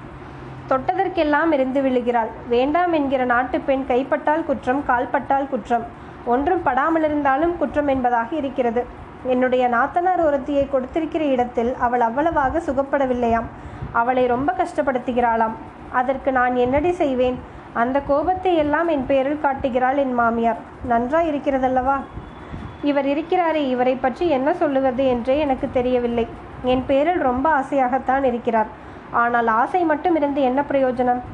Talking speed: 115 wpm